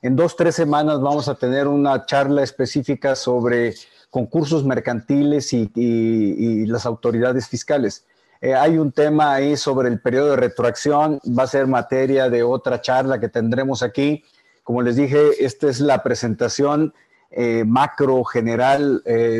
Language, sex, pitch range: Spanish, male, 125-150 Hz